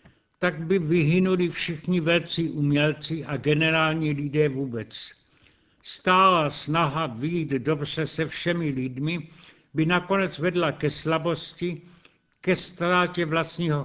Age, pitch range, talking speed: 70-89, 145-175 Hz, 110 wpm